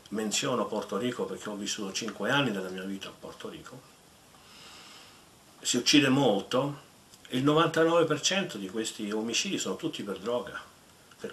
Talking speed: 145 wpm